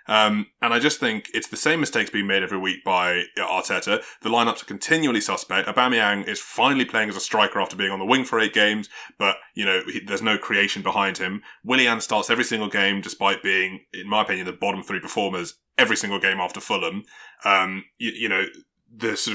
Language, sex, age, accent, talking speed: English, male, 20-39, British, 215 wpm